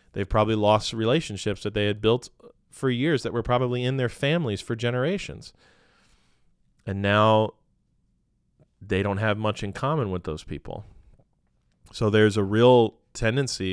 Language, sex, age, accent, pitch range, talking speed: English, male, 30-49, American, 100-130 Hz, 150 wpm